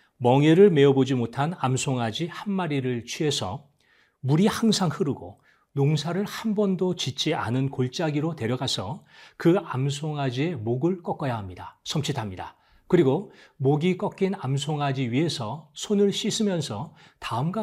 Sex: male